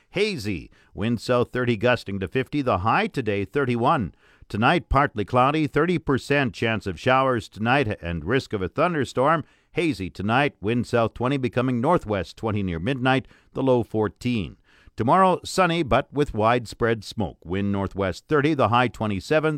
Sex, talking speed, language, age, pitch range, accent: male, 150 wpm, English, 50-69, 110-140 Hz, American